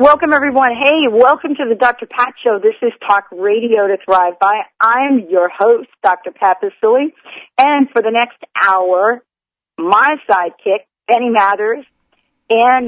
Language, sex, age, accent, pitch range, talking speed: English, female, 50-69, American, 185-250 Hz, 150 wpm